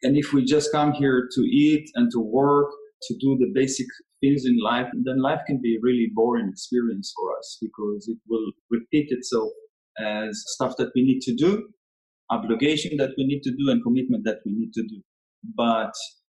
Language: English